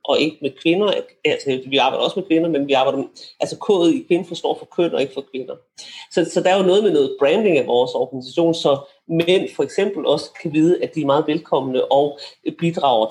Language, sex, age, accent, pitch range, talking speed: Danish, male, 40-59, native, 155-200 Hz, 230 wpm